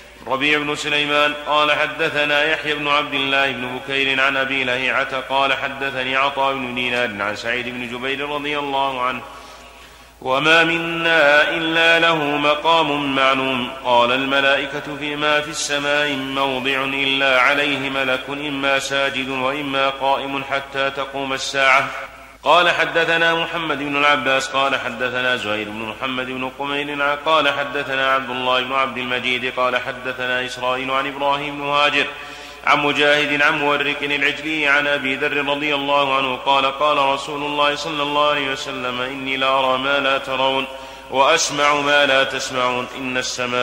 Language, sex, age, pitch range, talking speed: Arabic, male, 30-49, 135-145 Hz, 145 wpm